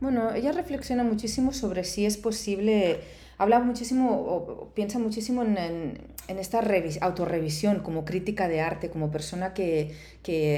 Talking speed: 140 wpm